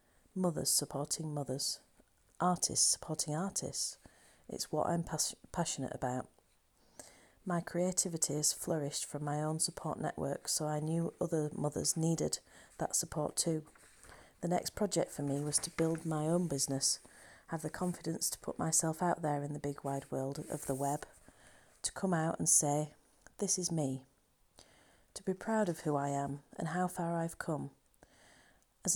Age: 40-59